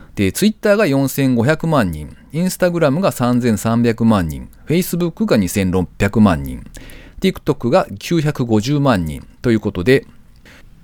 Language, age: Japanese, 40-59